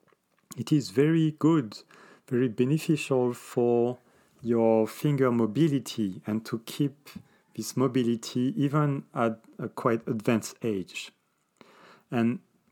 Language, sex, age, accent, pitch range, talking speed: English, male, 40-59, French, 105-125 Hz, 105 wpm